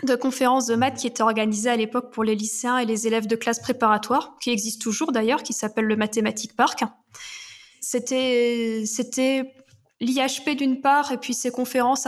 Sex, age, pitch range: female, 20-39, 225-265 Hz